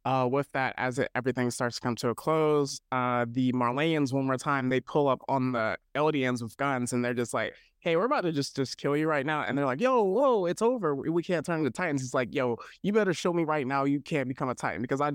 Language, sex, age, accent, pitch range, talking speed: English, male, 20-39, American, 125-140 Hz, 265 wpm